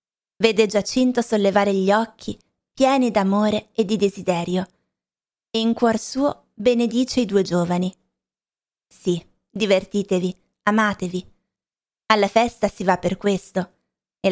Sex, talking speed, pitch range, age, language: female, 115 wpm, 185-225 Hz, 20-39, Italian